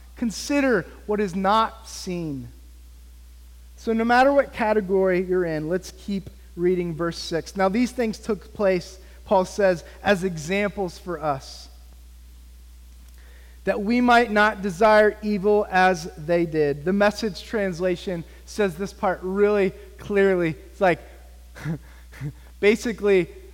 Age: 30-49